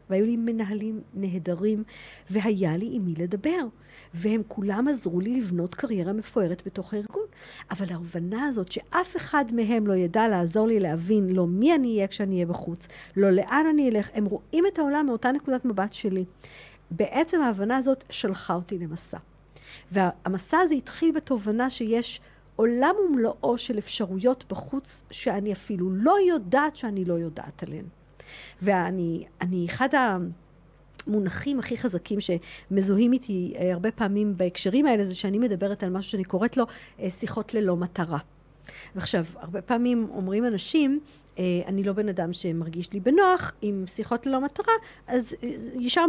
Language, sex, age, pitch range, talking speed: Hebrew, female, 50-69, 185-260 Hz, 145 wpm